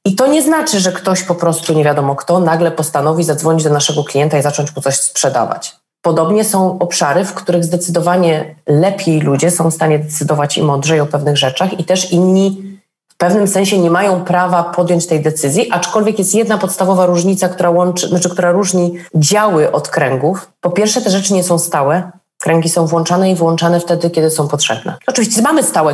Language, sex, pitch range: Polish, female, 155-190 Hz